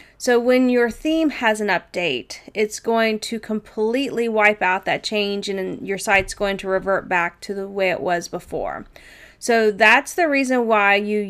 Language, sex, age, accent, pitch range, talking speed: English, female, 30-49, American, 200-260 Hz, 180 wpm